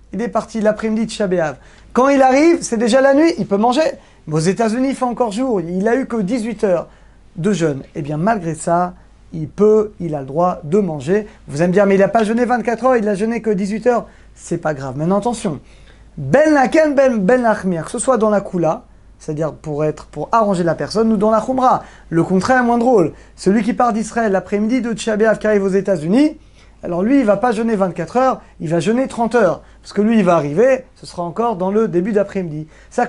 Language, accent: French, French